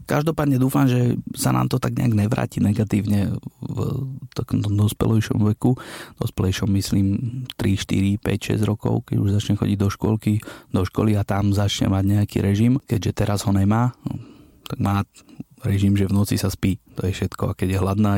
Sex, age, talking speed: male, 30-49, 180 wpm